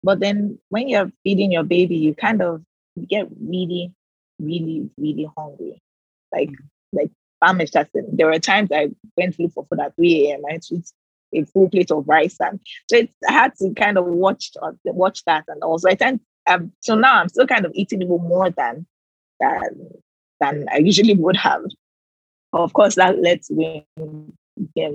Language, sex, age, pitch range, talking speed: English, female, 20-39, 160-205 Hz, 185 wpm